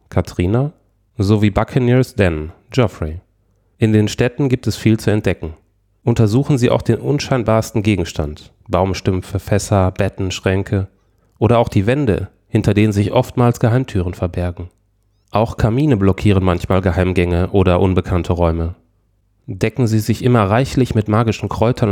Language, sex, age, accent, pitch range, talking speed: German, male, 30-49, German, 95-125 Hz, 140 wpm